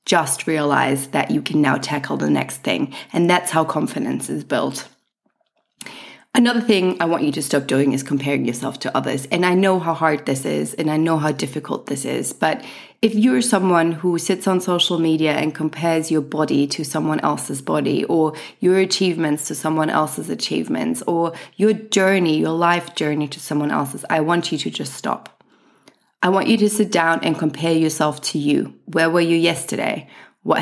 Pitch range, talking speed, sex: 155-185 Hz, 190 wpm, female